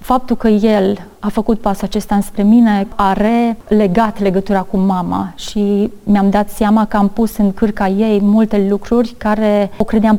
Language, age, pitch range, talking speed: Romanian, 30-49, 195-230 Hz, 170 wpm